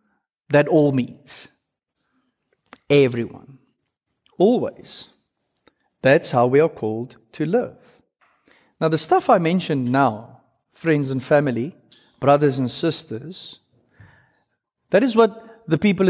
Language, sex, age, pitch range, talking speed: English, male, 50-69, 125-165 Hz, 110 wpm